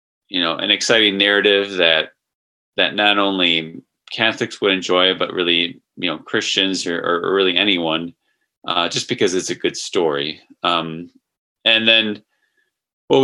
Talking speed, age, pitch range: 145 wpm, 20-39, 85-105 Hz